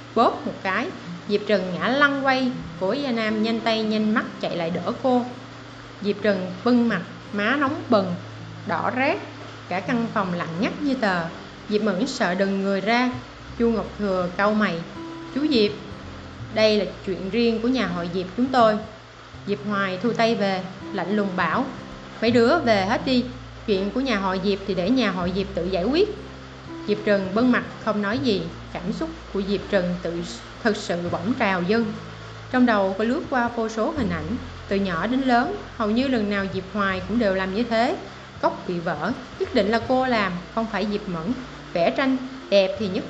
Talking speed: 200 wpm